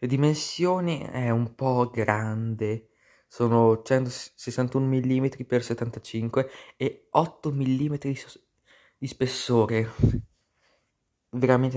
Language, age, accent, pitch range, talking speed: Italian, 20-39, native, 110-130 Hz, 85 wpm